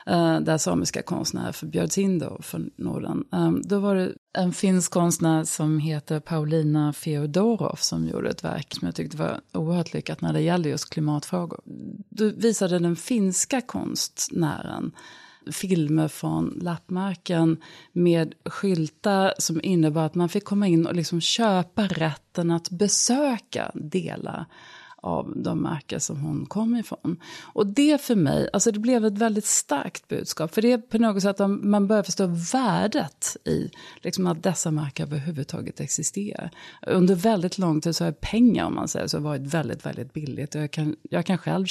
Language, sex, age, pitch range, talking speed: Swedish, female, 30-49, 155-200 Hz, 165 wpm